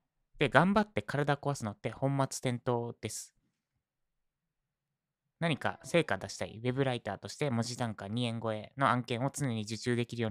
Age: 20-39